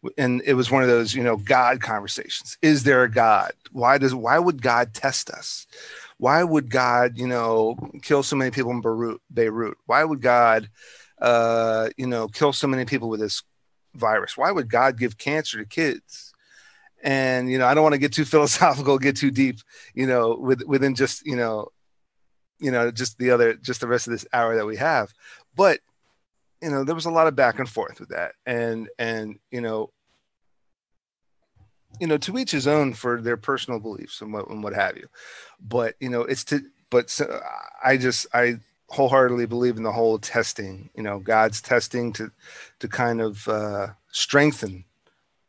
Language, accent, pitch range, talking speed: English, American, 110-135 Hz, 190 wpm